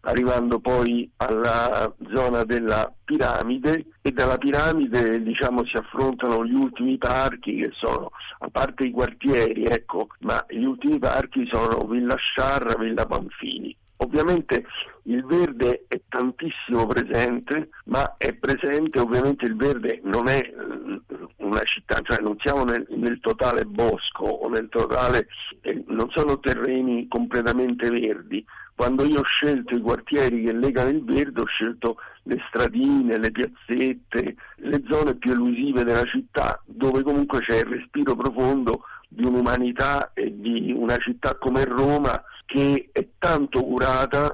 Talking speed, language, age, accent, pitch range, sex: 140 wpm, Italian, 60-79, native, 120-140 Hz, male